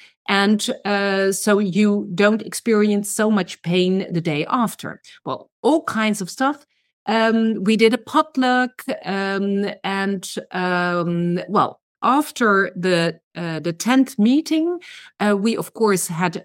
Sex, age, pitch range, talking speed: female, 50-69, 180-240 Hz, 130 wpm